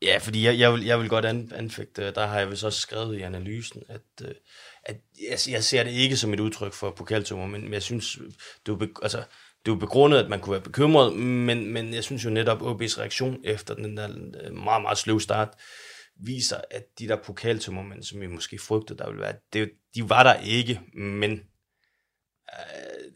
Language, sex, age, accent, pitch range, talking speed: Danish, male, 30-49, native, 100-115 Hz, 195 wpm